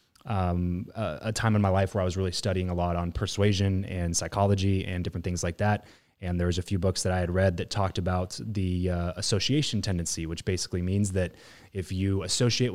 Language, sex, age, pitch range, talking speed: English, male, 20-39, 90-110 Hz, 220 wpm